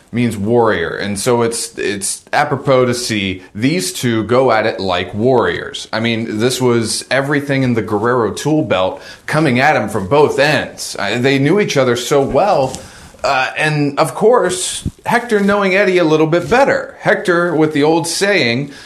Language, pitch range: English, 105-140 Hz